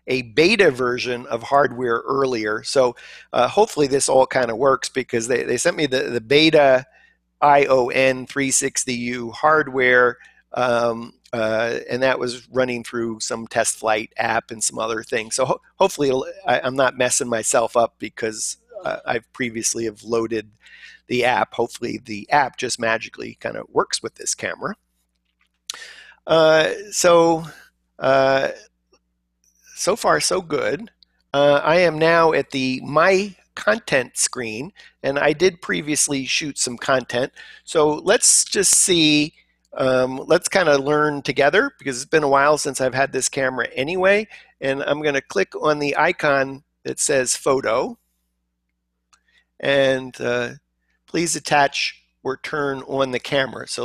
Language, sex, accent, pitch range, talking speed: English, male, American, 115-145 Hz, 145 wpm